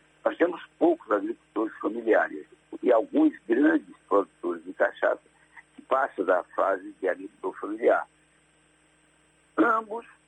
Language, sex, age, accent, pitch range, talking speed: Portuguese, male, 60-79, Brazilian, 295-380 Hz, 110 wpm